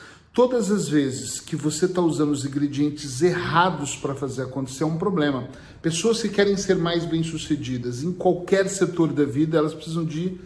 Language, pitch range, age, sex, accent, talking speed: Portuguese, 150-195 Hz, 40-59, male, Brazilian, 170 wpm